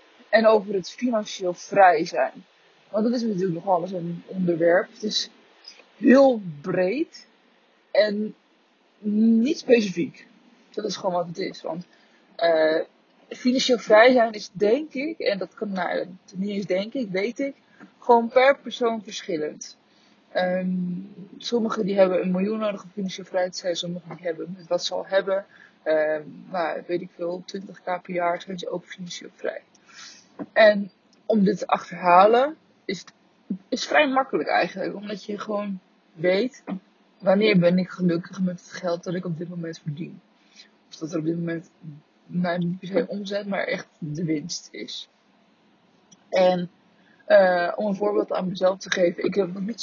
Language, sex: Dutch, female